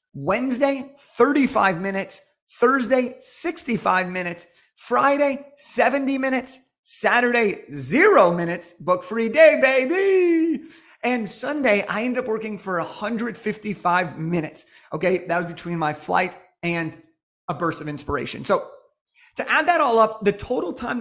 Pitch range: 180-250 Hz